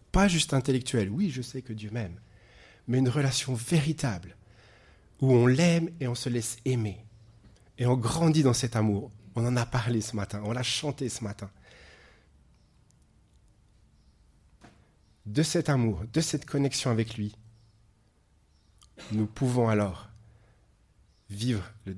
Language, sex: French, male